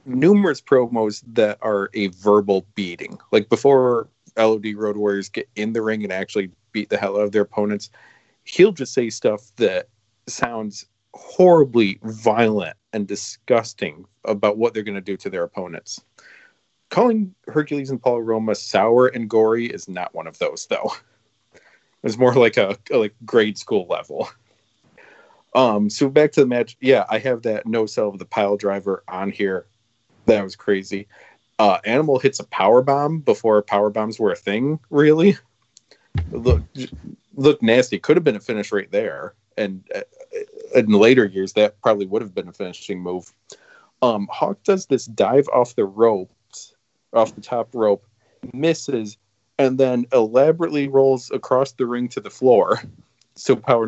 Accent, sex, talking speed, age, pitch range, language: American, male, 165 wpm, 40-59, 105-140 Hz, English